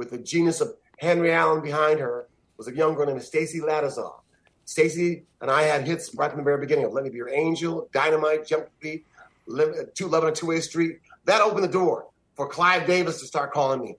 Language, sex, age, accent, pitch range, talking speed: English, male, 30-49, American, 145-180 Hz, 225 wpm